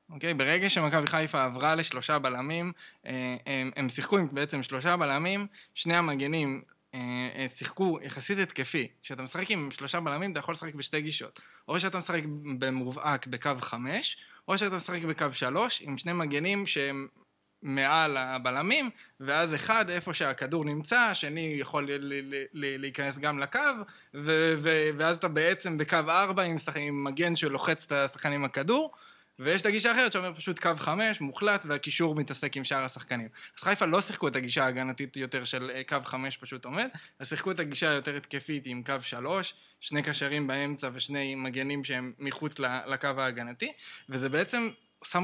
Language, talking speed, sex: Hebrew, 150 wpm, male